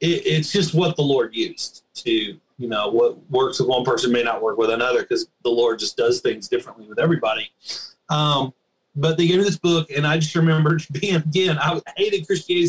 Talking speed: 210 wpm